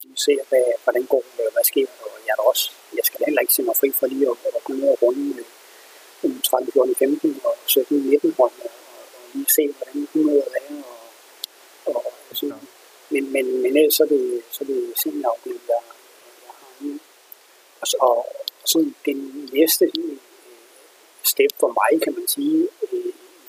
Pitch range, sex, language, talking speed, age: 315-440 Hz, male, Danish, 170 wpm, 30-49